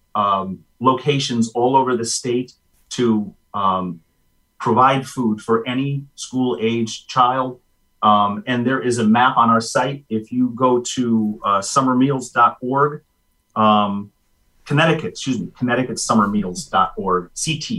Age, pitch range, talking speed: 30-49, 105-125 Hz, 115 wpm